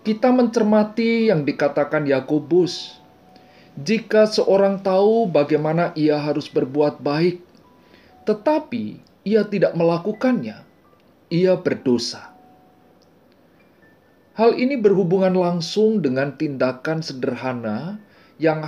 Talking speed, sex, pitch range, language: 85 wpm, male, 150-220 Hz, Indonesian